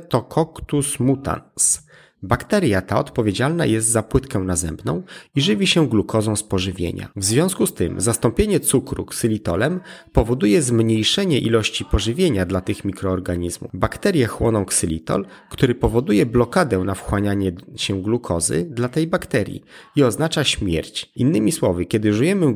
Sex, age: male, 30-49